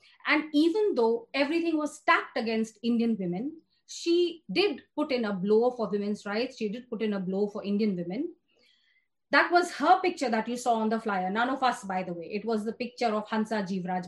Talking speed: 215 wpm